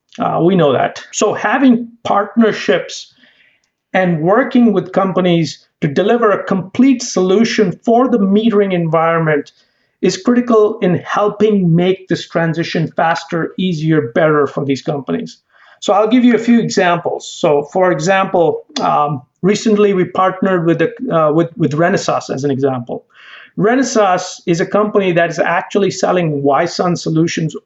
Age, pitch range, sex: 50-69, 165-210 Hz, male